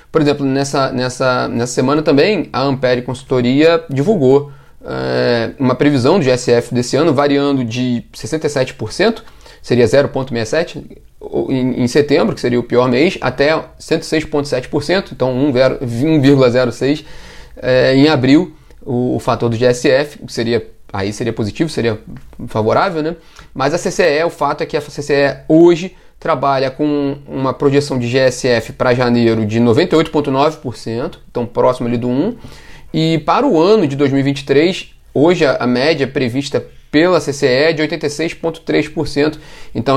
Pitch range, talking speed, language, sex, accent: 125-150 Hz, 130 wpm, Portuguese, male, Brazilian